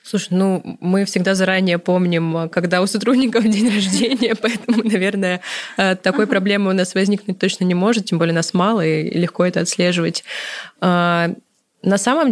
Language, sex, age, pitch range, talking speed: Russian, female, 20-39, 160-190 Hz, 150 wpm